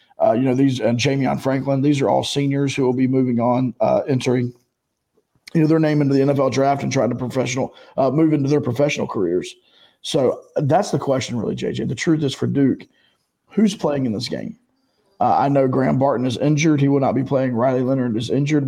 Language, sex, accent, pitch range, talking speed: English, male, American, 125-145 Hz, 220 wpm